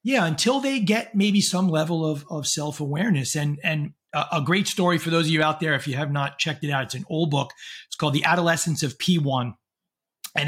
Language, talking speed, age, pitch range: English, 230 wpm, 30-49, 145-180 Hz